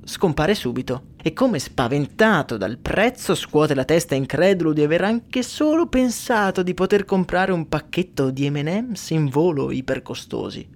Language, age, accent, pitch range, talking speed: Italian, 20-39, native, 140-195 Hz, 145 wpm